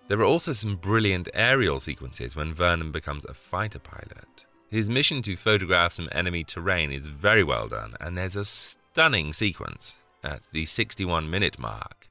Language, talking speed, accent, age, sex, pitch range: English, 170 wpm, British, 30-49, male, 80-110 Hz